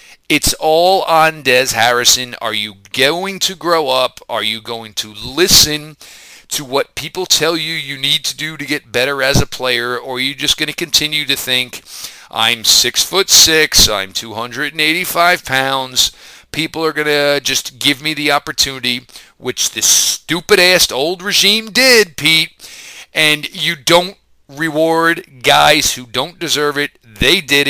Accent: American